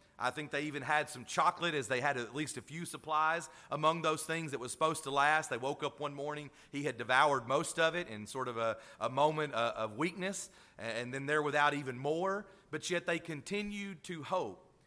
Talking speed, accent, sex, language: 220 wpm, American, male, English